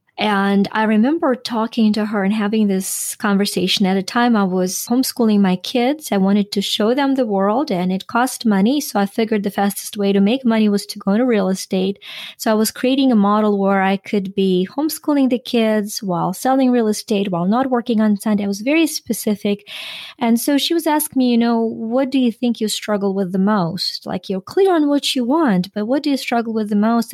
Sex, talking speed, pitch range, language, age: female, 225 wpm, 200-255 Hz, English, 20-39